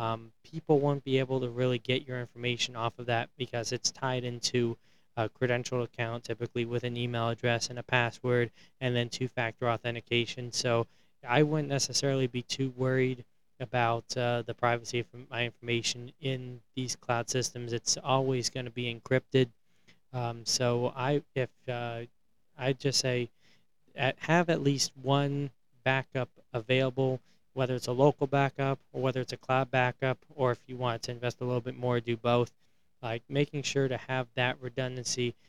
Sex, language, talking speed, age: male, English, 170 wpm, 20-39